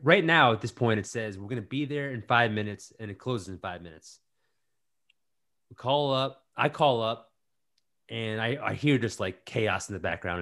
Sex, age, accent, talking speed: male, 30-49, American, 215 wpm